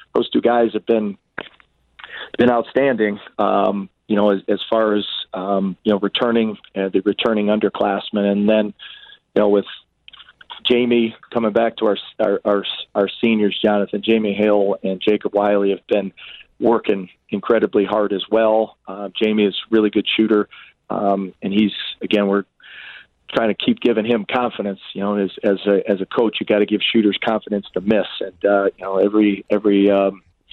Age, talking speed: 40-59, 175 wpm